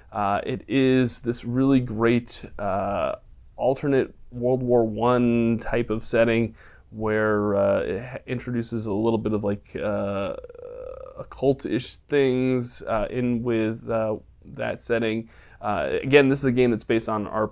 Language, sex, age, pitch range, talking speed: English, male, 20-39, 105-125 Hz, 150 wpm